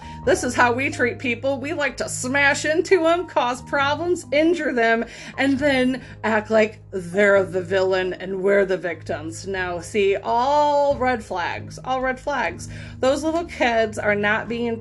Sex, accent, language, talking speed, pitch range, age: female, American, English, 165 wpm, 200-265 Hz, 30-49